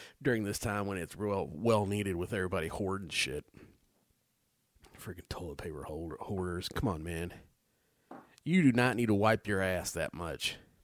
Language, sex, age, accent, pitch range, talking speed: English, male, 30-49, American, 100-130 Hz, 160 wpm